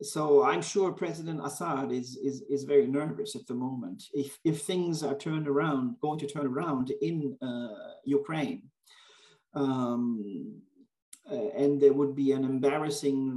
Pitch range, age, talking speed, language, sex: 135-160 Hz, 40-59, 150 wpm, Turkish, male